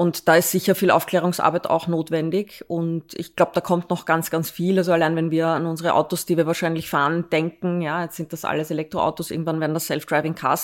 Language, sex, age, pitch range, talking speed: German, female, 20-39, 160-175 Hz, 220 wpm